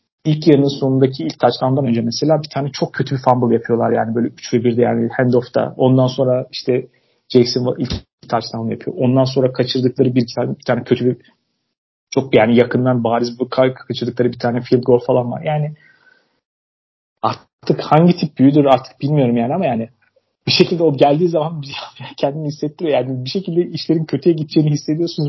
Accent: native